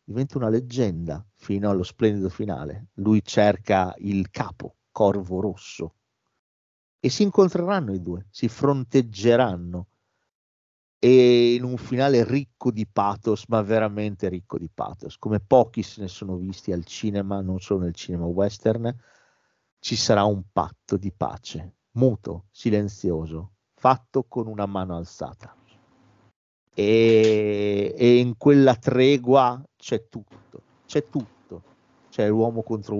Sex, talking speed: male, 125 wpm